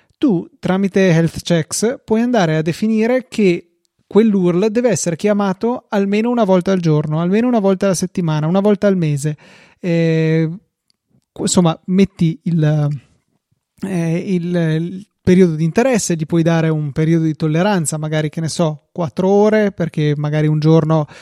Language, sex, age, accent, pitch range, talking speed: Italian, male, 30-49, native, 155-190 Hz, 150 wpm